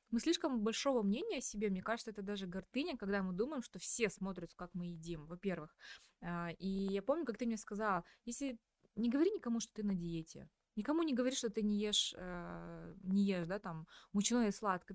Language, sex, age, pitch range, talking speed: Russian, female, 20-39, 185-235 Hz, 200 wpm